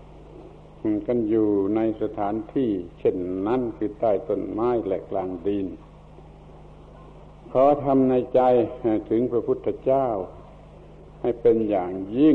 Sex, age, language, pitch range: male, 70-89, Thai, 110-135 Hz